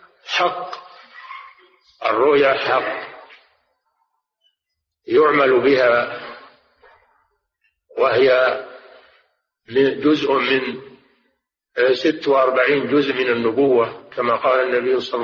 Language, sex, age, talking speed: Arabic, male, 50-69, 65 wpm